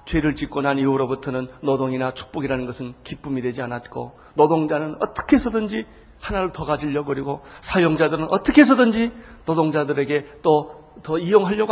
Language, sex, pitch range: Korean, male, 140-210 Hz